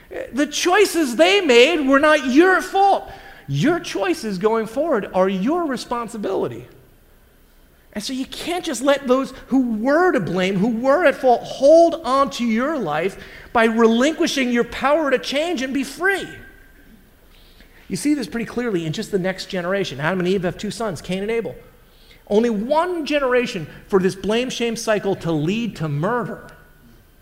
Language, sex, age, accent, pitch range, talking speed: English, male, 40-59, American, 165-260 Hz, 165 wpm